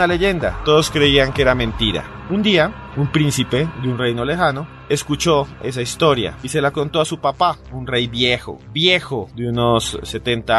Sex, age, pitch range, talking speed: male, 30-49, 105-130 Hz, 180 wpm